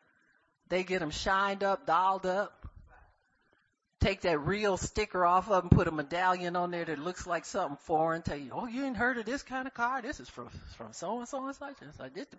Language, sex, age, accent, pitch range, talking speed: English, male, 50-69, American, 140-185 Hz, 230 wpm